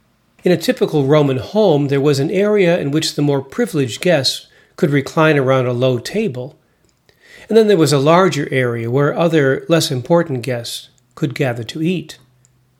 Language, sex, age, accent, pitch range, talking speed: English, male, 40-59, American, 130-175 Hz, 175 wpm